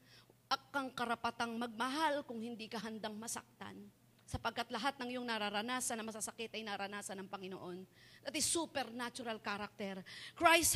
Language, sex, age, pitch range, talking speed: Filipino, female, 40-59, 250-330 Hz, 135 wpm